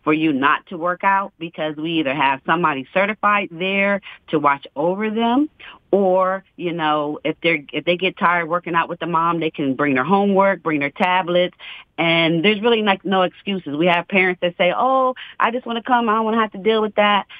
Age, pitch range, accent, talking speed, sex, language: 40-59, 155-195 Hz, American, 225 wpm, female, English